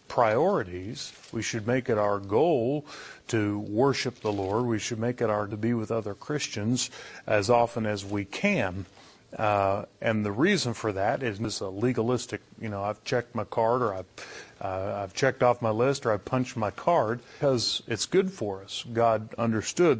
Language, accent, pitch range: English, American, 105-125 Hz